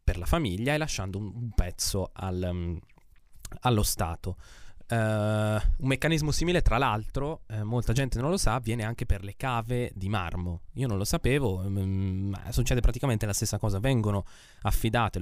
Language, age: Italian, 20-39